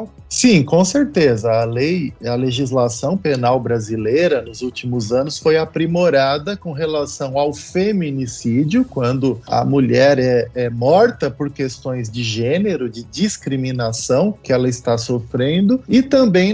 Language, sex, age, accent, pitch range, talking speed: Portuguese, male, 20-39, Brazilian, 135-195 Hz, 130 wpm